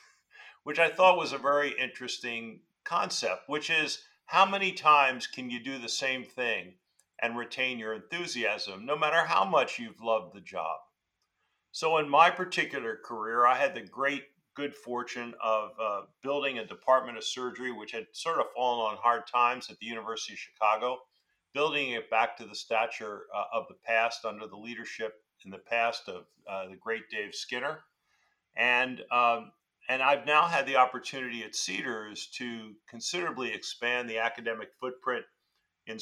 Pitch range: 115-140 Hz